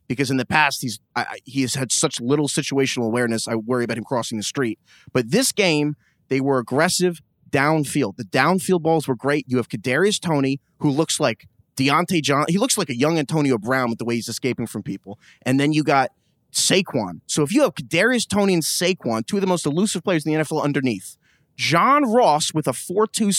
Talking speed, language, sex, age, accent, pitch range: 215 wpm, English, male, 30-49, American, 130-180 Hz